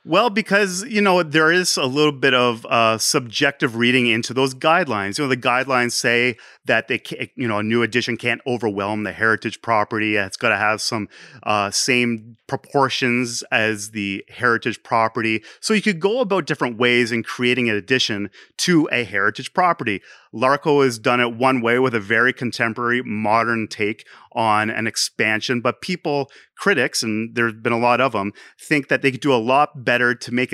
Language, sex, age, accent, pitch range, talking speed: English, male, 30-49, American, 115-140 Hz, 190 wpm